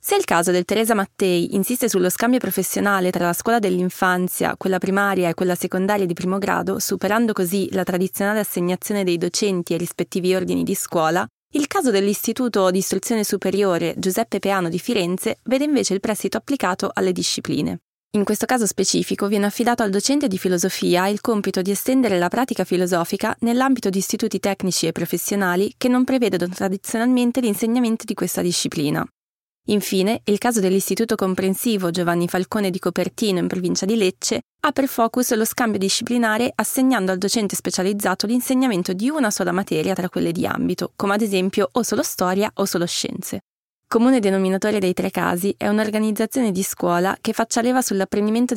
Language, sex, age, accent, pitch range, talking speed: Italian, female, 20-39, native, 185-230 Hz, 170 wpm